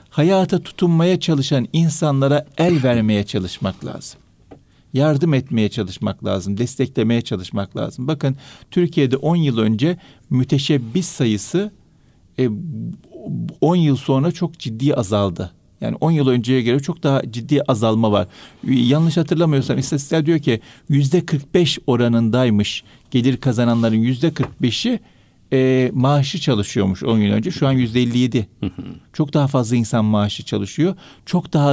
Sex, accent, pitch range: male, native, 115-155 Hz